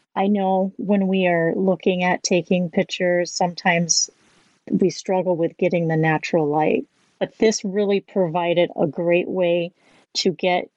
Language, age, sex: English, 30-49, female